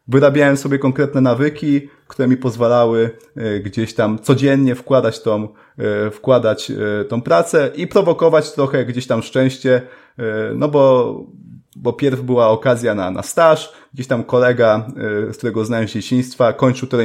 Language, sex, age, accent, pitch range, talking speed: Polish, male, 30-49, native, 115-135 Hz, 145 wpm